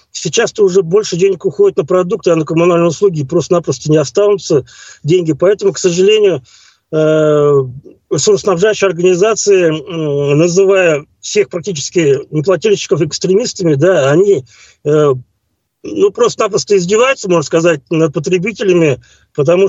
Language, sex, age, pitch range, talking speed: Russian, male, 50-69, 155-205 Hz, 105 wpm